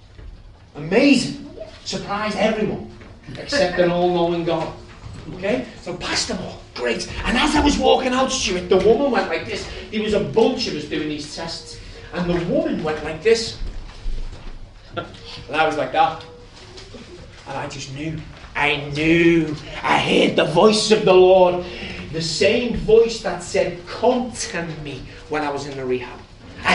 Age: 30-49